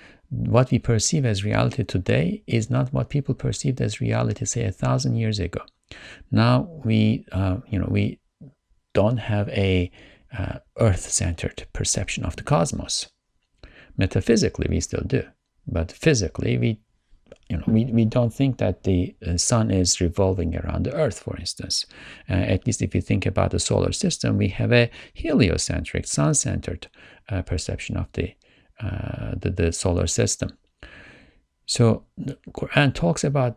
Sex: male